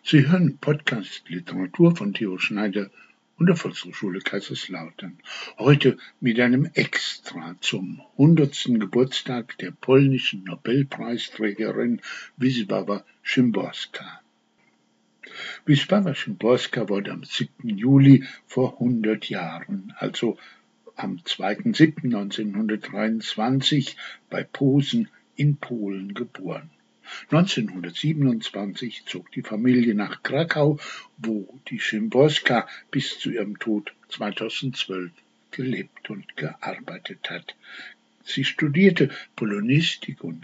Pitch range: 110-155 Hz